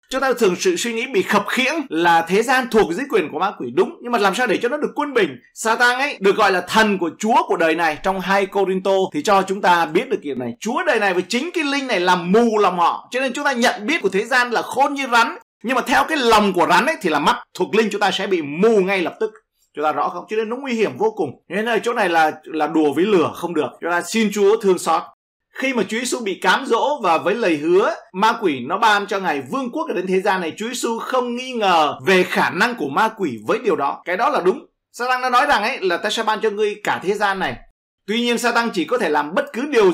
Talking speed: 290 wpm